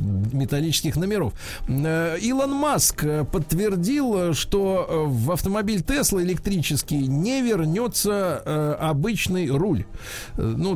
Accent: native